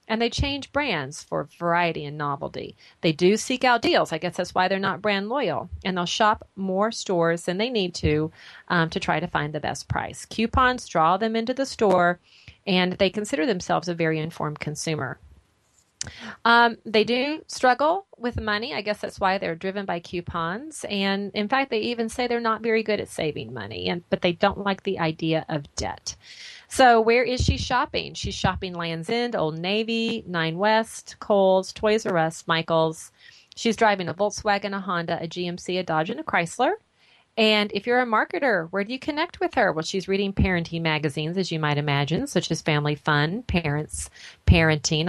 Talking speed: 195 wpm